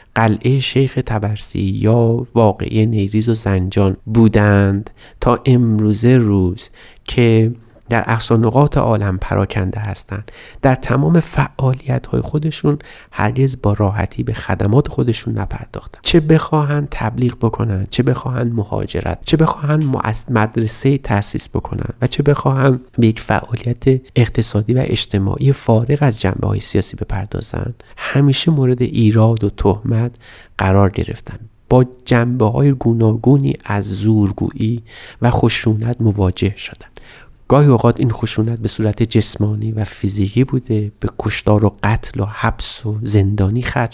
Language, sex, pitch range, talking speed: Persian, male, 105-125 Hz, 125 wpm